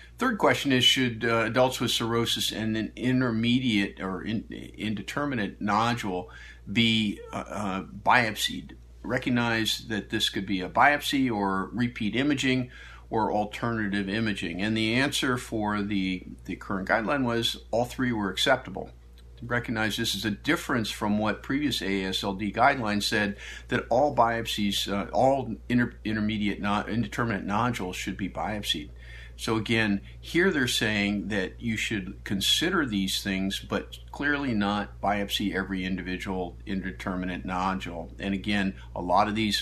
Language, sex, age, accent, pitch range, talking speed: English, male, 50-69, American, 95-115 Hz, 140 wpm